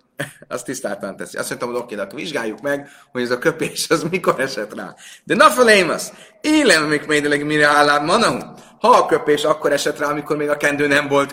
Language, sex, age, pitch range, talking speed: Hungarian, male, 30-49, 140-195 Hz, 215 wpm